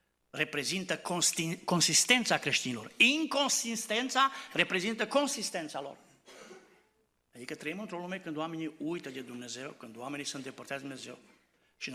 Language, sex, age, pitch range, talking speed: Romanian, male, 60-79, 125-175 Hz, 120 wpm